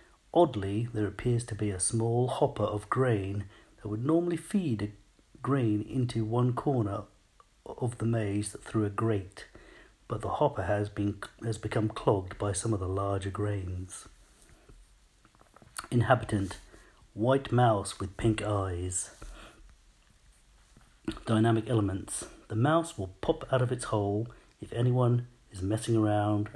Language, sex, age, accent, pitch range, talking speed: English, male, 40-59, British, 100-120 Hz, 135 wpm